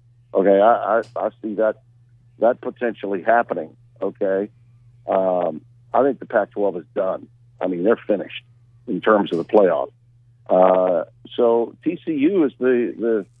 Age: 50-69